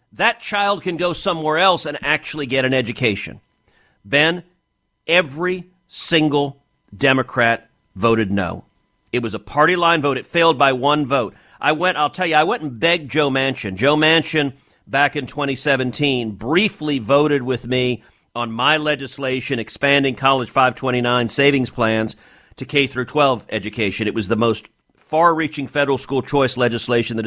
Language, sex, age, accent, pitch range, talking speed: English, male, 50-69, American, 115-155 Hz, 150 wpm